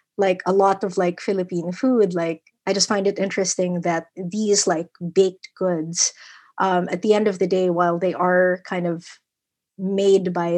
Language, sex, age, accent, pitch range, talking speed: English, female, 20-39, Filipino, 175-200 Hz, 180 wpm